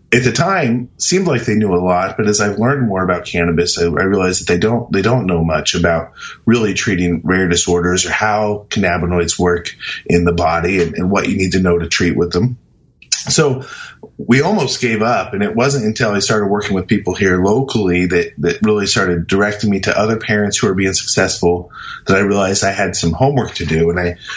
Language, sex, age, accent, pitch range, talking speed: English, male, 30-49, American, 90-110 Hz, 215 wpm